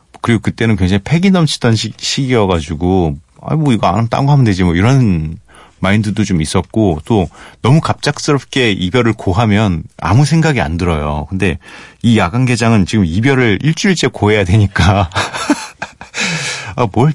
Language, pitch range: Korean, 85-125 Hz